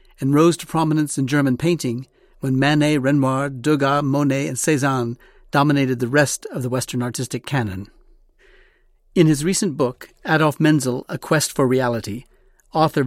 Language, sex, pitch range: English, male, 130-150 Hz